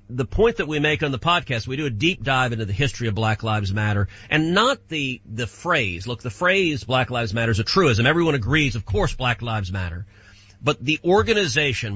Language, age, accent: English, 40-59, American